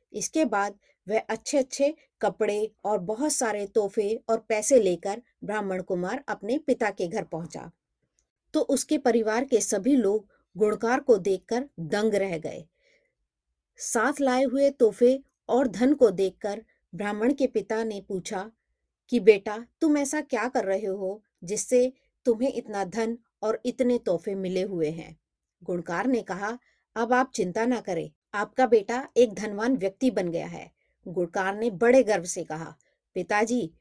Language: Hindi